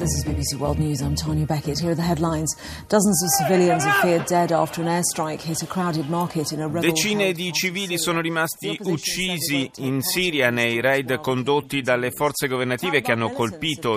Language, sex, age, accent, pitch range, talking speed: Italian, male, 40-59, native, 115-160 Hz, 170 wpm